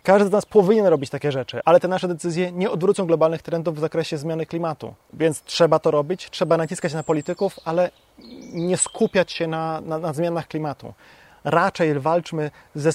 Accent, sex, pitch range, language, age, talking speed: native, male, 150-185 Hz, Polish, 30-49, 180 wpm